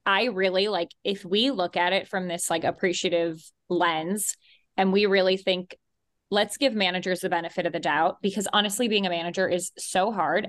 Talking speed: 190 wpm